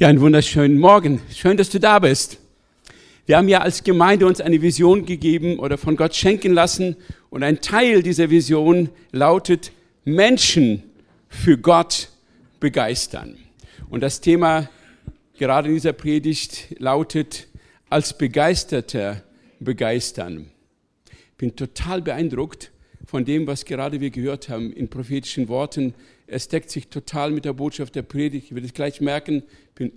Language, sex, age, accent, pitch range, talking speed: German, male, 50-69, German, 135-180 Hz, 150 wpm